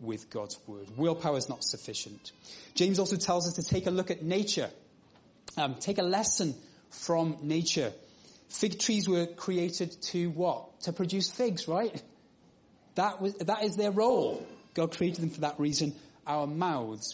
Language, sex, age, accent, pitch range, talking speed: English, male, 30-49, British, 130-185 Hz, 165 wpm